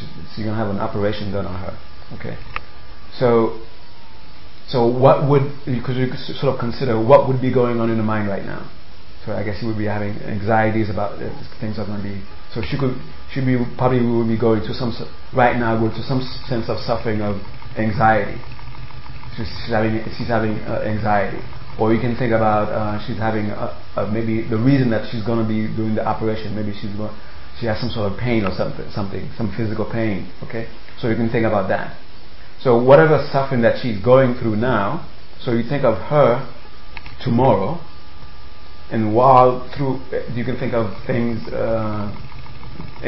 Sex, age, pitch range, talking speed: male, 30-49, 105-125 Hz, 190 wpm